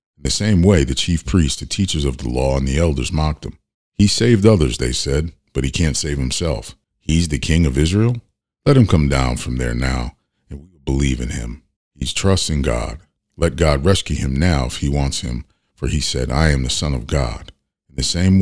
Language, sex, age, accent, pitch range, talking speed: English, male, 40-59, American, 65-85 Hz, 225 wpm